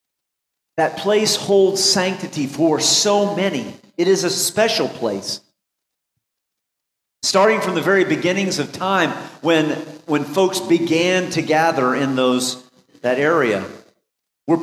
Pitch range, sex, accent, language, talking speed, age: 145-185 Hz, male, American, English, 125 wpm, 40-59